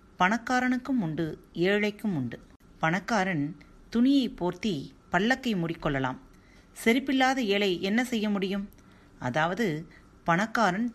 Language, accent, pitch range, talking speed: Tamil, native, 140-215 Hz, 90 wpm